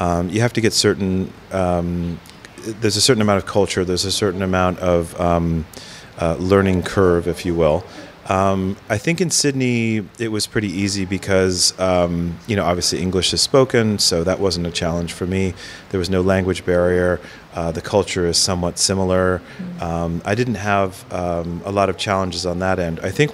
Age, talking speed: 30-49, 190 wpm